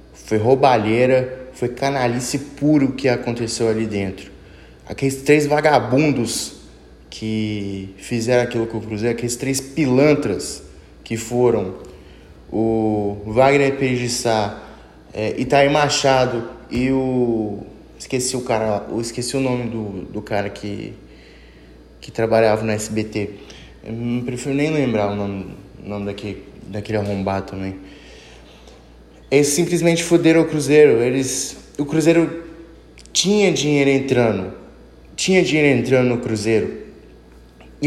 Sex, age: male, 20-39